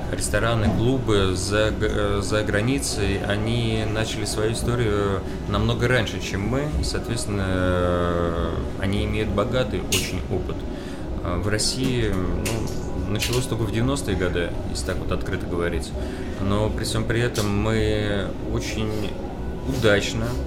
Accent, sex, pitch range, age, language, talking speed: native, male, 90-110 Hz, 30-49, Russian, 120 wpm